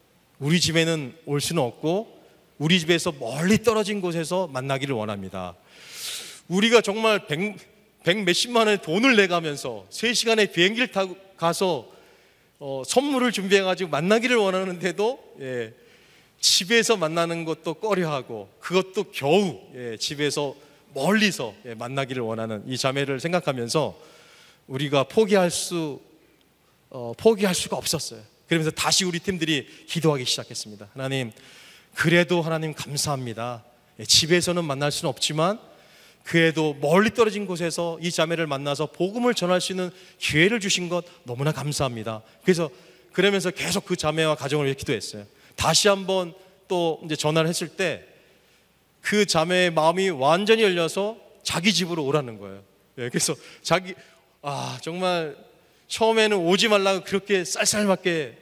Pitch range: 145-190 Hz